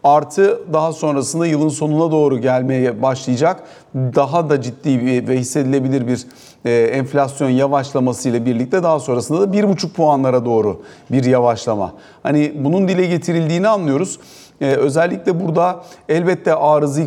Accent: native